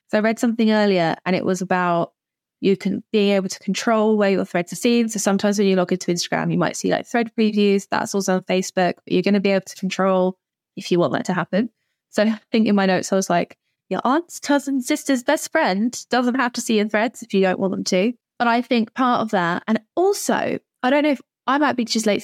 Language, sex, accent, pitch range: English, female, British, 190-240 Hz